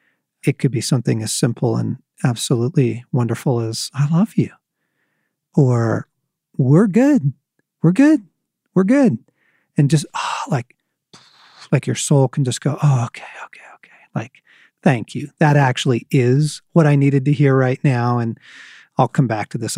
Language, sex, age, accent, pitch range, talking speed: English, male, 40-59, American, 120-155 Hz, 160 wpm